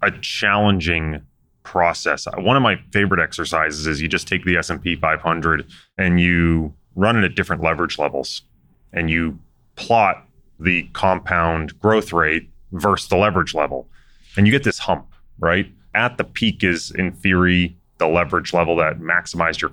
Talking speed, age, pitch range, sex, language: 160 wpm, 30-49, 80-100 Hz, male, English